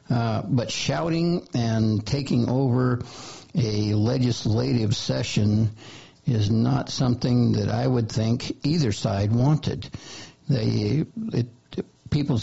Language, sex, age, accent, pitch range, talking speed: English, male, 60-79, American, 110-135 Hz, 110 wpm